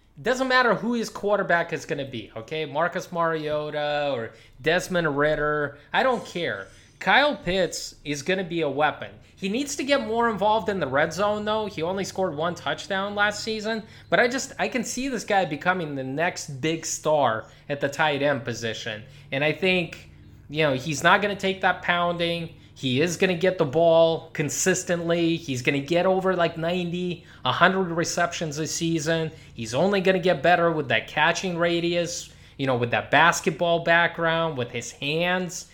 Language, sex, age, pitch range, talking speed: English, male, 20-39, 145-185 Hz, 190 wpm